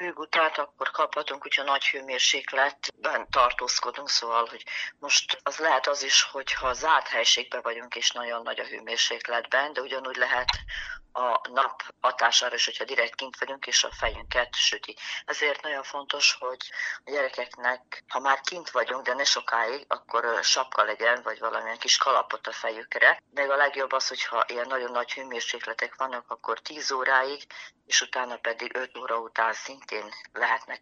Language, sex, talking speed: Hungarian, female, 155 wpm